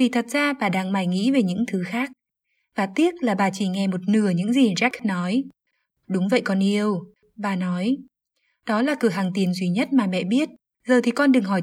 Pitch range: 190-250 Hz